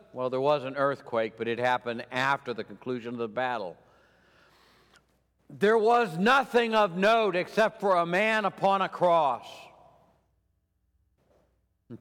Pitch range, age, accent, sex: 120-165 Hz, 60-79, American, male